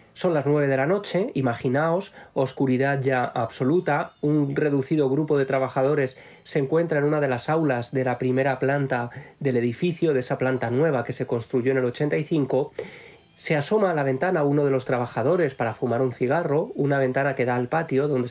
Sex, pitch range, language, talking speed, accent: male, 125-155 Hz, Spanish, 190 wpm, Spanish